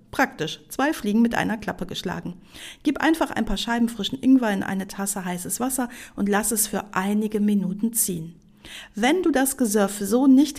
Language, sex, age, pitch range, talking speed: German, female, 50-69, 200-250 Hz, 180 wpm